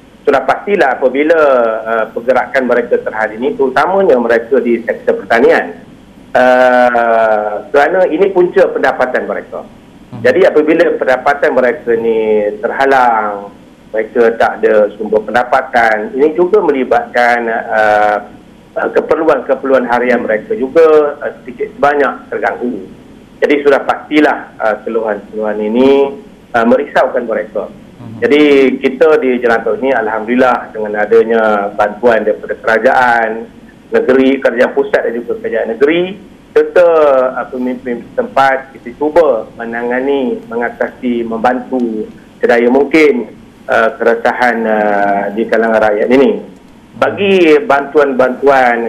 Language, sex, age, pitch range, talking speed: Malay, male, 50-69, 115-150 Hz, 110 wpm